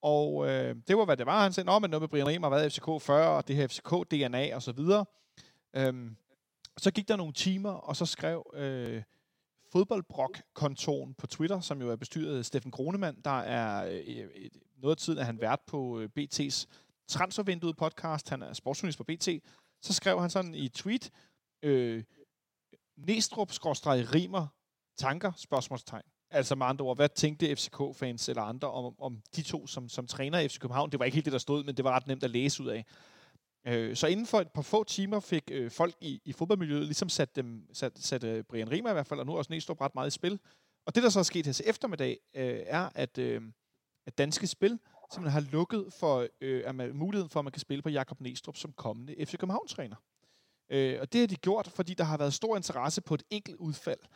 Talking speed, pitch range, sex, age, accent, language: 200 wpm, 130-180 Hz, male, 30-49, native, Danish